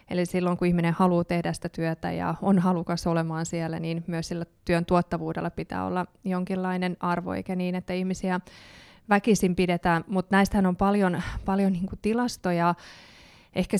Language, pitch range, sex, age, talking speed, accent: Finnish, 165-185 Hz, female, 20-39, 155 wpm, native